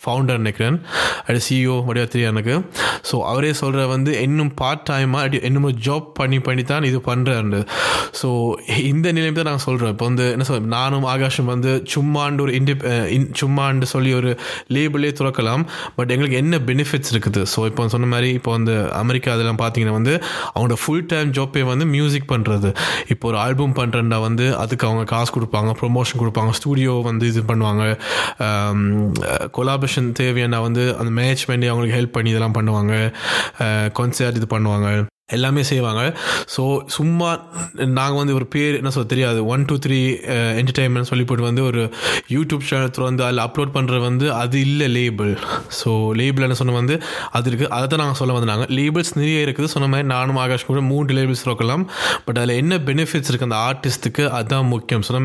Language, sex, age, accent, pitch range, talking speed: Tamil, male, 20-39, native, 120-140 Hz, 165 wpm